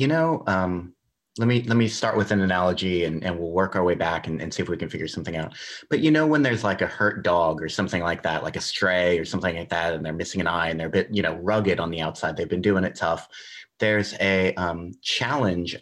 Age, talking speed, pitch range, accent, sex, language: 30-49, 270 wpm, 90-105 Hz, American, male, English